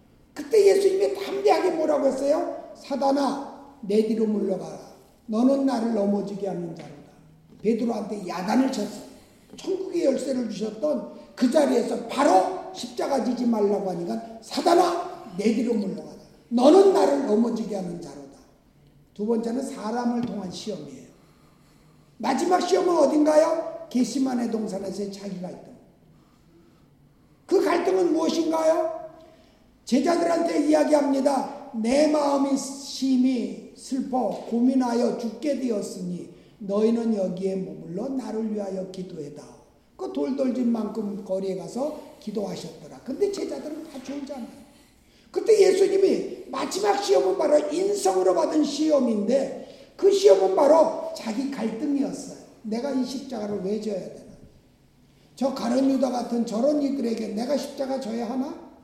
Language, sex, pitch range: Korean, male, 215-305 Hz